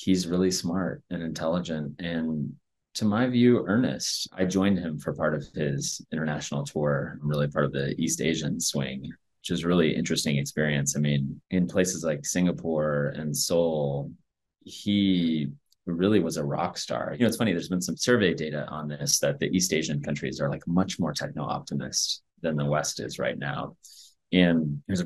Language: English